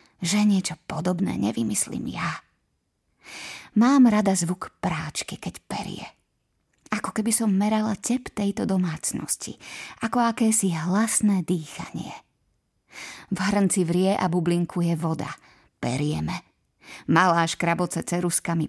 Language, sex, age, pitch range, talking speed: Slovak, female, 20-39, 170-215 Hz, 105 wpm